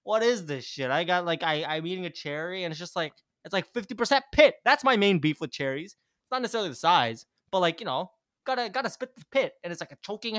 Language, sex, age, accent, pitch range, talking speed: English, male, 20-39, American, 140-200 Hz, 260 wpm